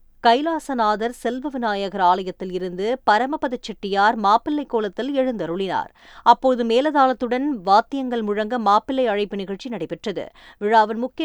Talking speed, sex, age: 105 wpm, female, 20-39